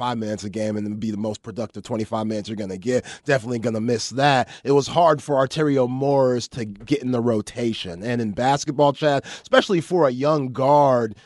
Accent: American